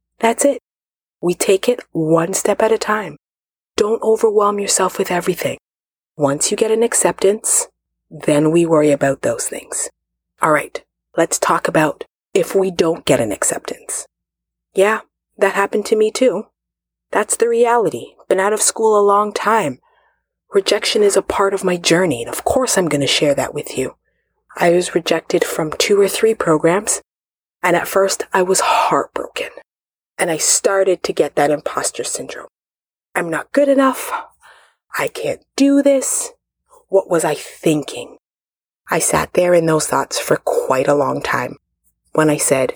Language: English